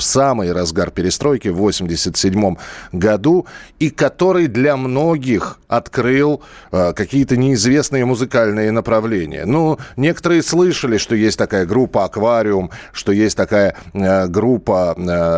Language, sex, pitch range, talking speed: Russian, male, 90-130 Hz, 120 wpm